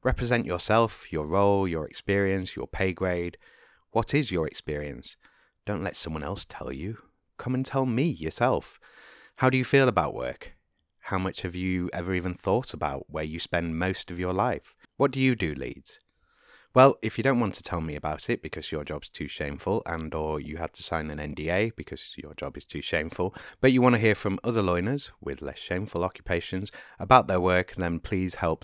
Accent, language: British, English